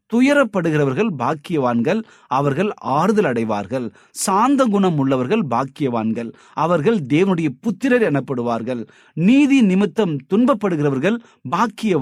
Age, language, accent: 30-49, Tamil, native